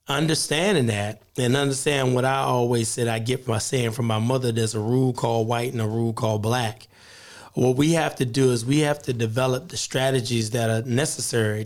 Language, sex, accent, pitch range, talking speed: English, male, American, 115-135 Hz, 205 wpm